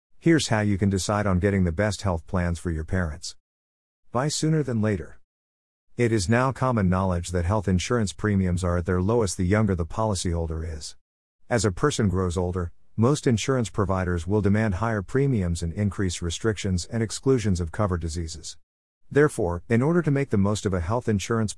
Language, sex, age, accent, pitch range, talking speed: English, male, 50-69, American, 85-115 Hz, 185 wpm